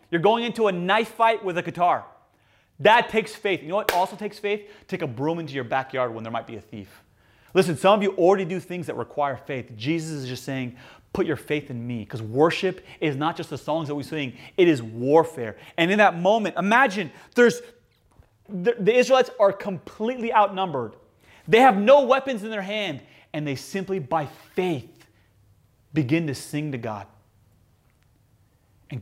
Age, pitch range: 30-49, 125-185 Hz